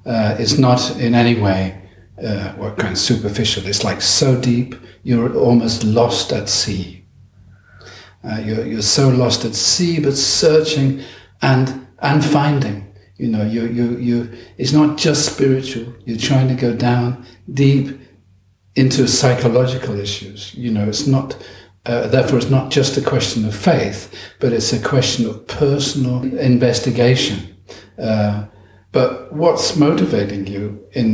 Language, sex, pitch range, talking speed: Danish, male, 100-125 Hz, 145 wpm